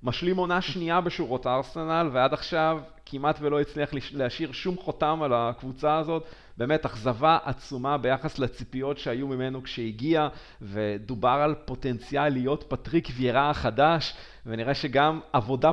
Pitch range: 130-170 Hz